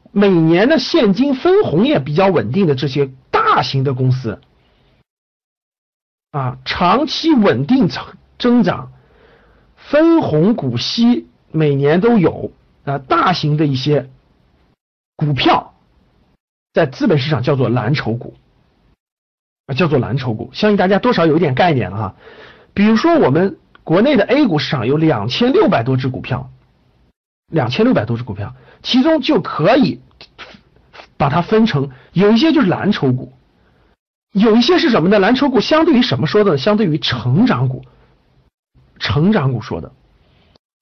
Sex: male